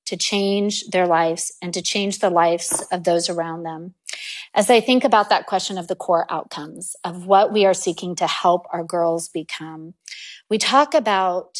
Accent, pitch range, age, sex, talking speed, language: American, 175-220 Hz, 30-49, female, 185 wpm, English